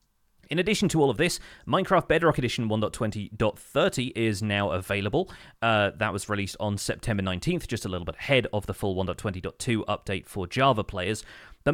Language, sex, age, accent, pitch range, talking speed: English, male, 30-49, British, 100-135 Hz, 175 wpm